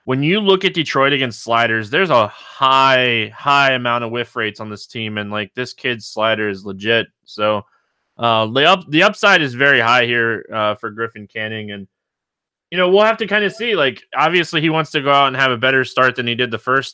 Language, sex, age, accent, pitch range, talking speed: English, male, 20-39, American, 110-140 Hz, 230 wpm